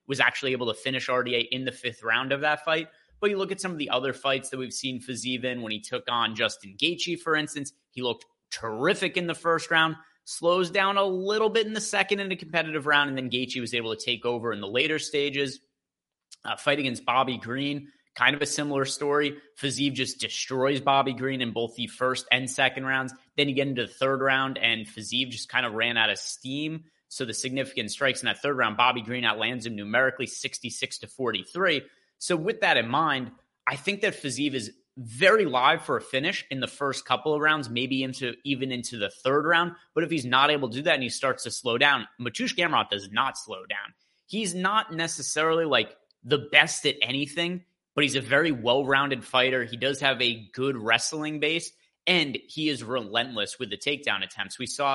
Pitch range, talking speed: 125-155 Hz, 215 wpm